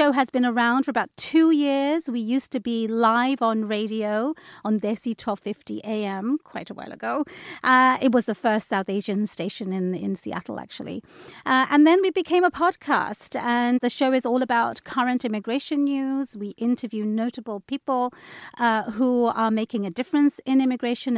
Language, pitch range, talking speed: English, 210-265 Hz, 180 wpm